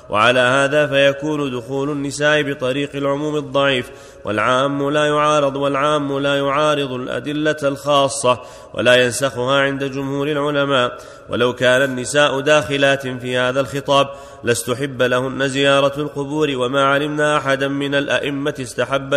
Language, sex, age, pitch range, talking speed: Arabic, male, 30-49, 135-150 Hz, 120 wpm